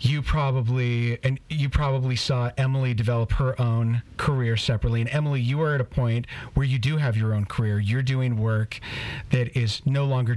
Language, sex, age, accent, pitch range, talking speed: English, male, 40-59, American, 110-135 Hz, 190 wpm